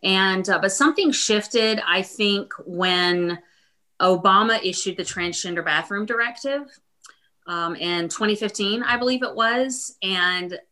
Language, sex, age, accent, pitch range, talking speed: English, female, 30-49, American, 170-200 Hz, 125 wpm